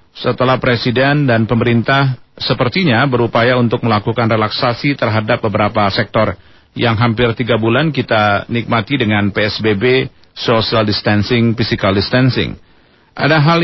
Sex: male